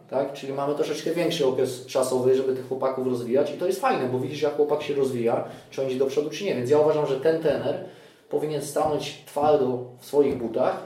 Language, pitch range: Polish, 125-160 Hz